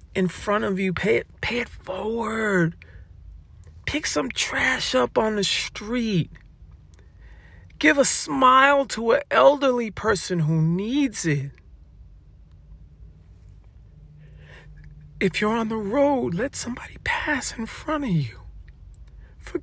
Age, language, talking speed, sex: 50-69, English, 115 wpm, male